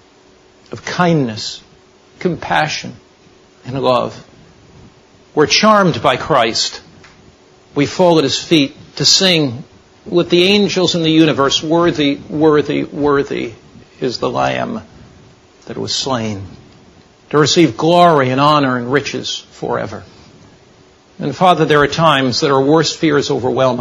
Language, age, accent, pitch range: English, 60-79, American, 130-165 Hz